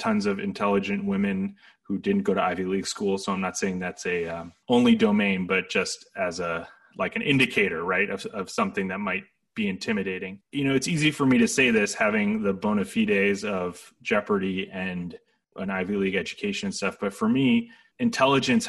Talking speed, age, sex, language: 195 wpm, 30-49, male, English